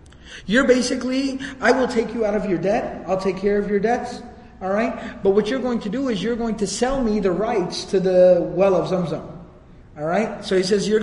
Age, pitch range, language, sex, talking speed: 30-49, 175-215 Hz, English, male, 225 wpm